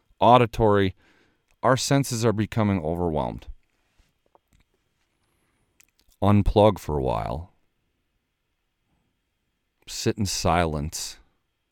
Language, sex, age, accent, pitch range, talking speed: English, male, 40-59, American, 75-90 Hz, 65 wpm